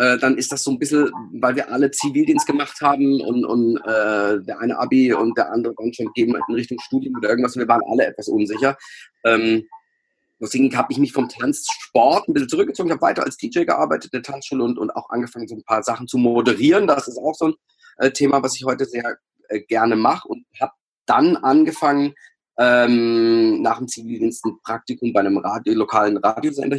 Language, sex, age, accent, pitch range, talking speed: German, male, 40-59, German, 115-145 Hz, 205 wpm